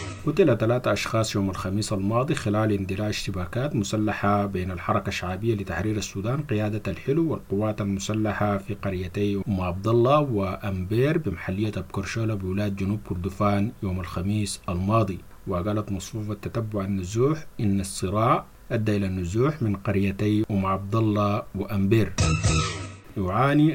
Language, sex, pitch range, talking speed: English, male, 100-115 Hz, 125 wpm